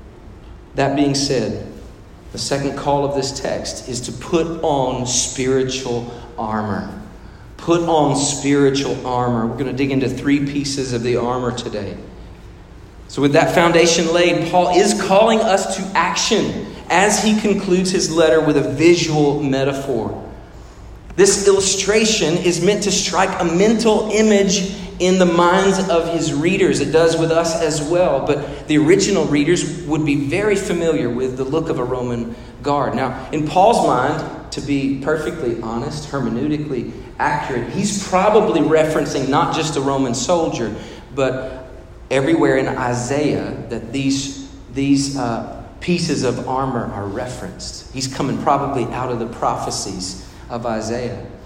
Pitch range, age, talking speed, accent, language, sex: 125-165 Hz, 40-59, 145 wpm, American, English, male